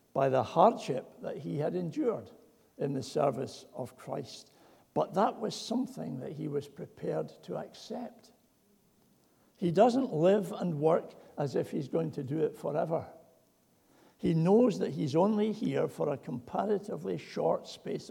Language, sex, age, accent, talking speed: English, male, 60-79, British, 150 wpm